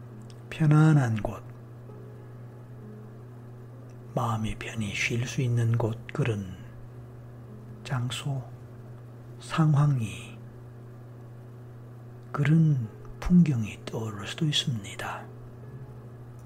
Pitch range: 115-125 Hz